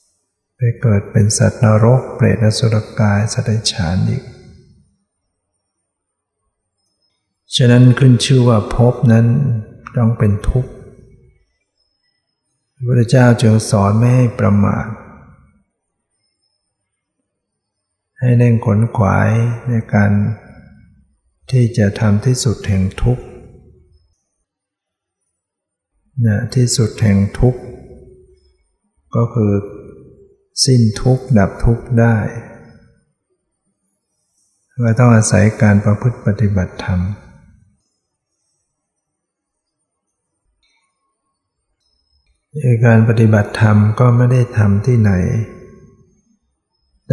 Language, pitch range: Thai, 100-120 Hz